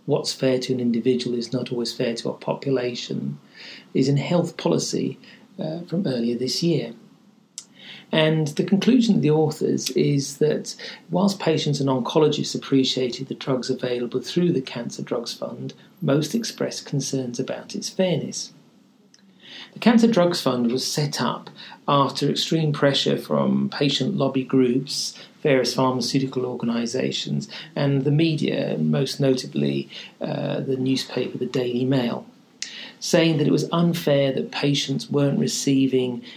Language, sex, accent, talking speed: English, male, British, 140 wpm